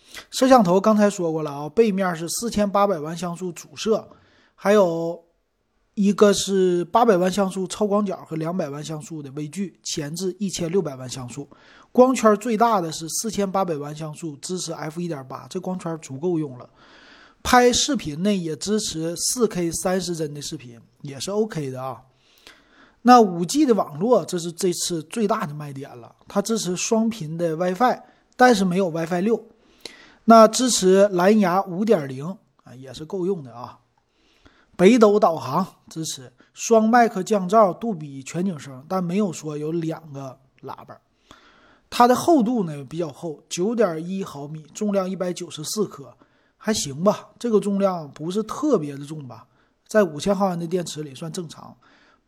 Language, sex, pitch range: Chinese, male, 155-210 Hz